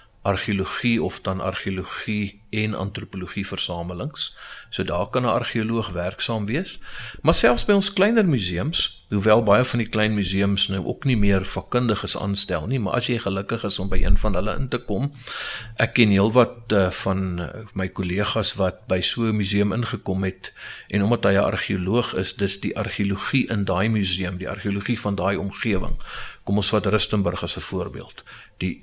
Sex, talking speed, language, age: male, 175 wpm, English, 50-69